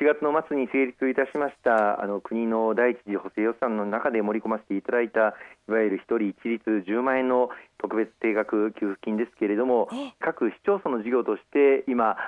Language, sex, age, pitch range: Japanese, male, 40-59, 110-150 Hz